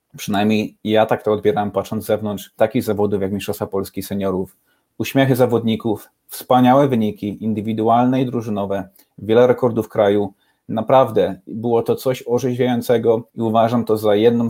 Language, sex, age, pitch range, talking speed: Polish, male, 30-49, 105-120 Hz, 140 wpm